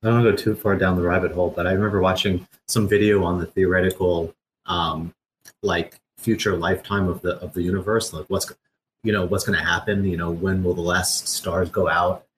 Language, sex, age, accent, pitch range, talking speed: English, male, 30-49, American, 90-110 Hz, 225 wpm